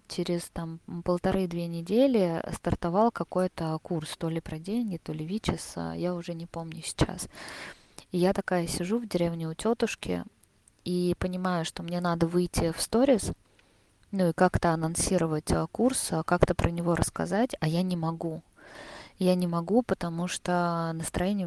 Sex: female